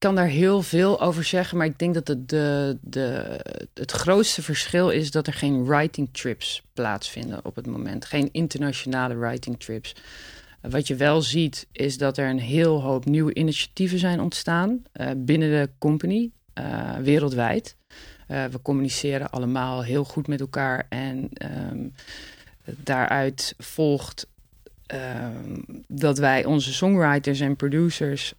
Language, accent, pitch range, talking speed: Dutch, Dutch, 130-155 Hz, 140 wpm